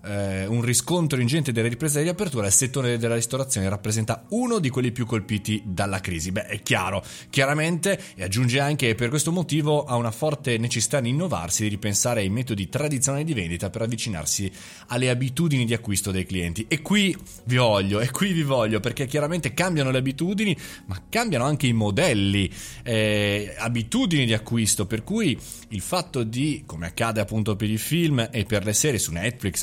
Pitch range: 105-145 Hz